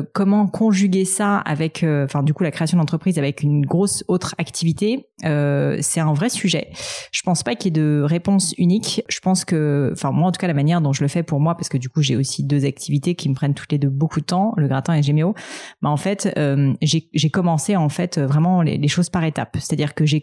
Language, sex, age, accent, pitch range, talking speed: French, female, 30-49, French, 145-180 Hz, 250 wpm